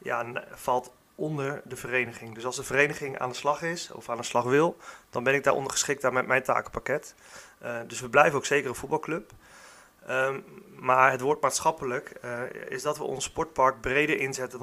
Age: 30-49